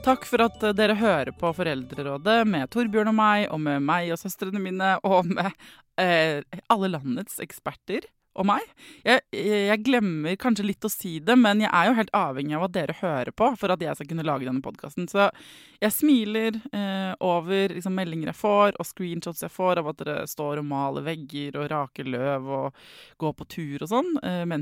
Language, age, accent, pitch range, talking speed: English, 20-39, Swedish, 155-215 Hz, 205 wpm